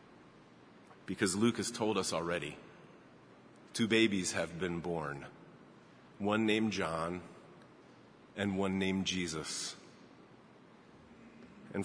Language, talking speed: English, 95 wpm